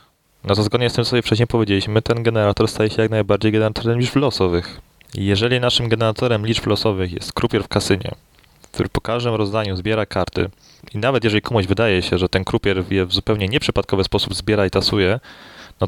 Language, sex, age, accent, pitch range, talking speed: Polish, male, 20-39, native, 100-115 Hz, 195 wpm